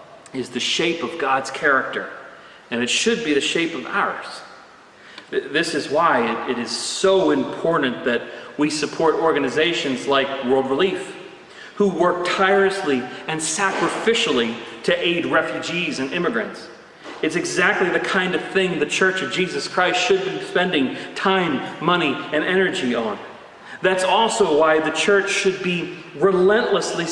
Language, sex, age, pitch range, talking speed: English, male, 40-59, 140-190 Hz, 145 wpm